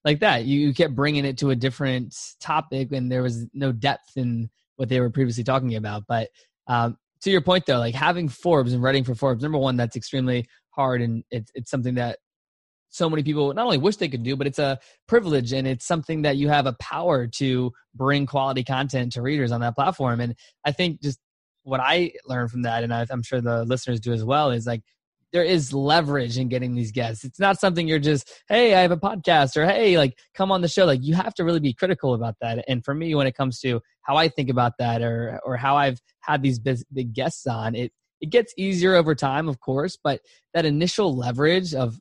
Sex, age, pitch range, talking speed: male, 20-39, 125-150 Hz, 230 wpm